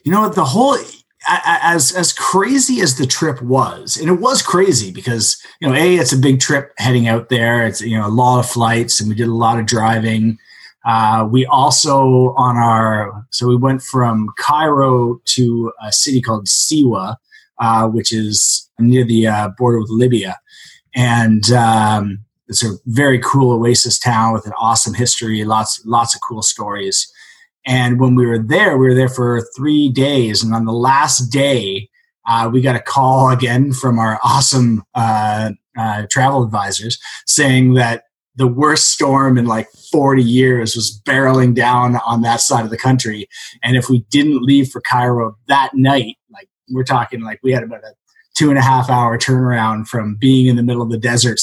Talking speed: 185 wpm